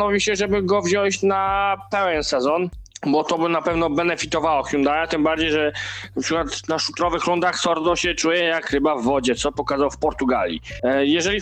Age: 20-39